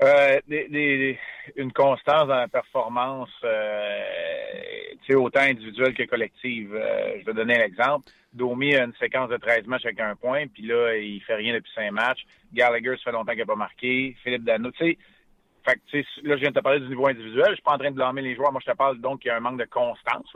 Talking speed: 235 wpm